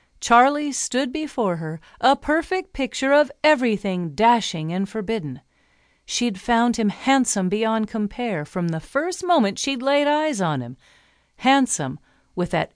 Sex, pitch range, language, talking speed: female, 185-265 Hz, English, 140 wpm